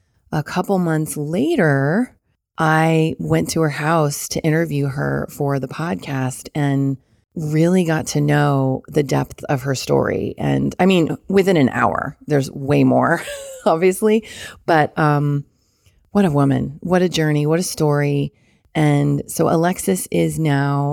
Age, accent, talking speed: 30-49, American, 145 wpm